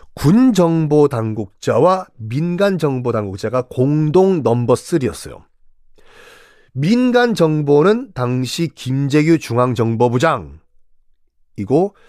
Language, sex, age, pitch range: Korean, male, 40-59, 125-210 Hz